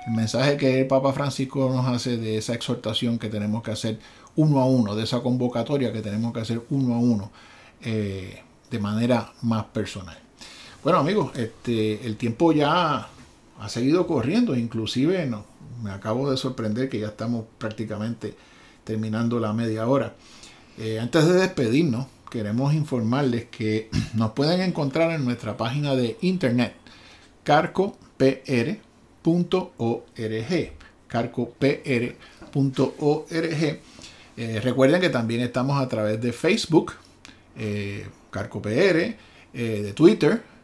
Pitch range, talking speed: 110-140 Hz, 135 wpm